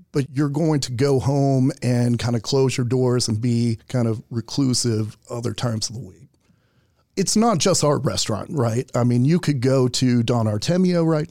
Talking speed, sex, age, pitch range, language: 195 wpm, male, 40-59, 120-150 Hz, English